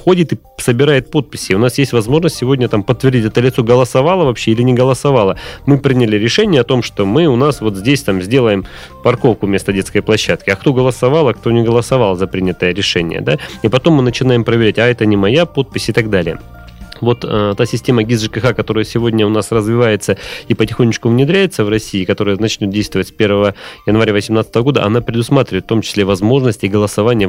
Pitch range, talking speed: 105-130 Hz, 195 wpm